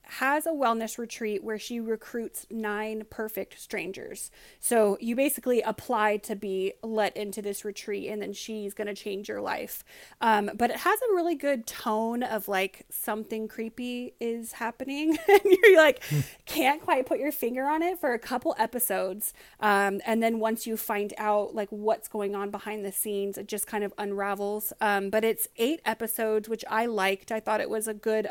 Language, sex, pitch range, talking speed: English, female, 210-255 Hz, 190 wpm